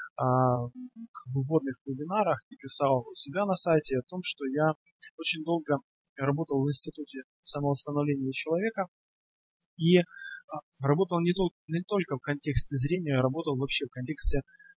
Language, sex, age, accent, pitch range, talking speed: Russian, male, 20-39, native, 140-175 Hz, 125 wpm